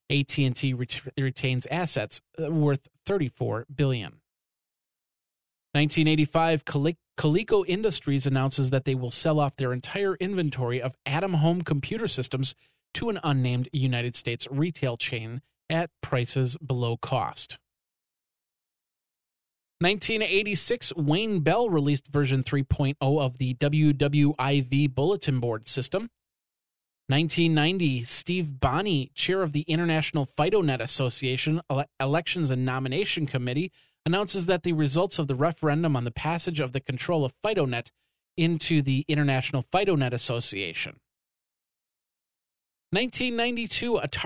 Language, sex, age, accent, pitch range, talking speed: English, male, 30-49, American, 130-165 Hz, 110 wpm